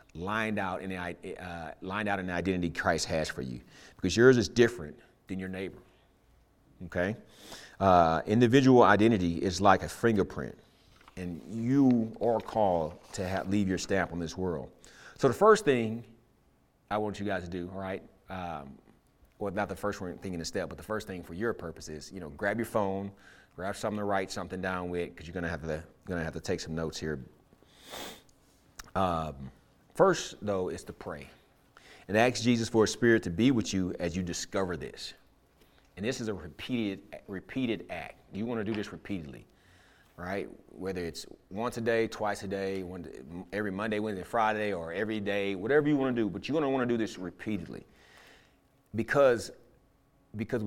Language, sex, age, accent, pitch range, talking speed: English, male, 30-49, American, 90-115 Hz, 190 wpm